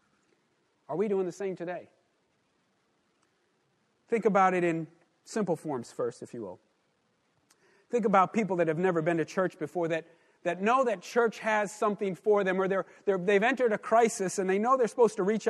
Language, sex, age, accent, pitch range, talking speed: English, male, 40-59, American, 175-225 Hz, 190 wpm